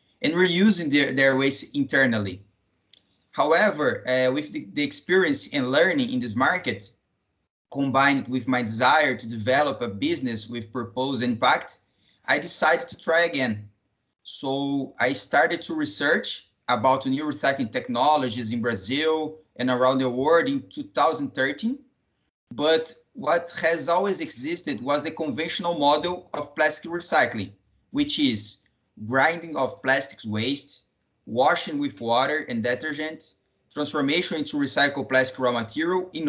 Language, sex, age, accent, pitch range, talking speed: English, male, 20-39, Brazilian, 120-170 Hz, 130 wpm